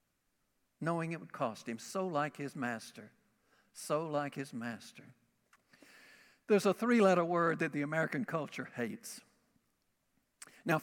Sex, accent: male, American